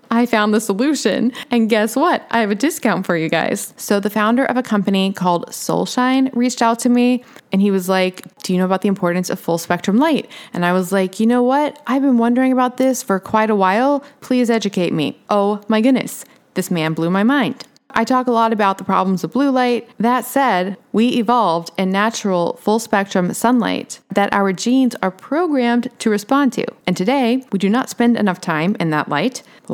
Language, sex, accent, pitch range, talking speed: English, female, American, 185-245 Hz, 215 wpm